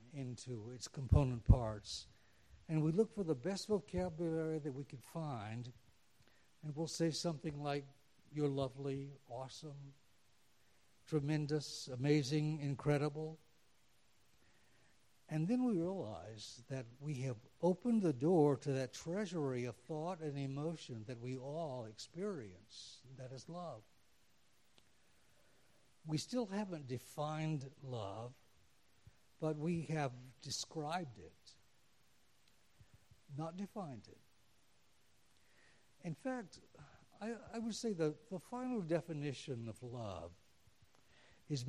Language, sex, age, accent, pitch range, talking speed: English, male, 60-79, American, 120-165 Hz, 110 wpm